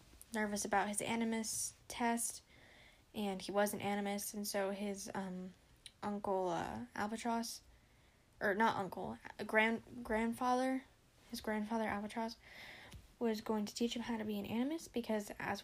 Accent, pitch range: American, 200-230 Hz